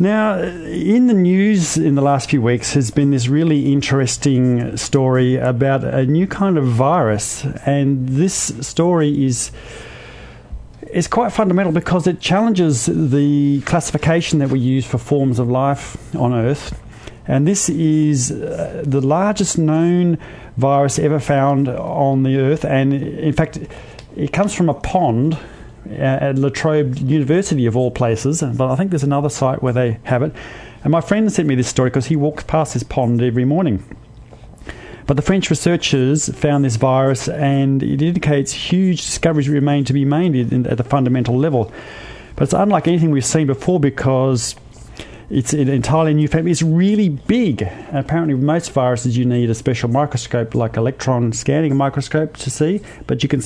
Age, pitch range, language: 40-59, 130-160 Hz, English